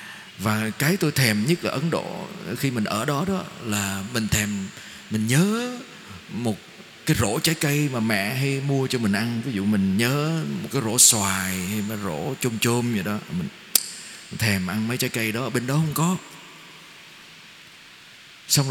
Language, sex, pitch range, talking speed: Vietnamese, male, 110-170 Hz, 185 wpm